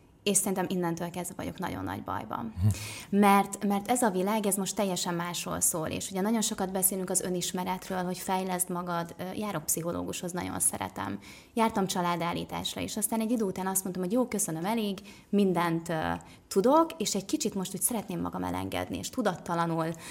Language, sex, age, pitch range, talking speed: Hungarian, female, 20-39, 175-210 Hz, 175 wpm